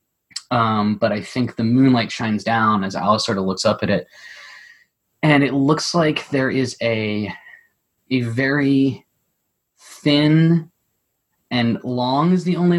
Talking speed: 145 wpm